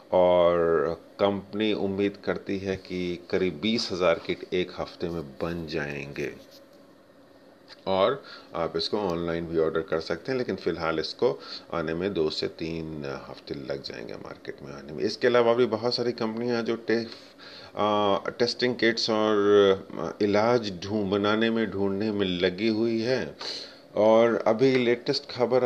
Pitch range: 95-115 Hz